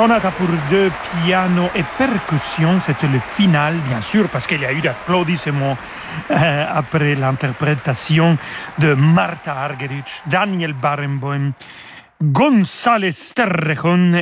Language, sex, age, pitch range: French, male, 40-59, 145-185 Hz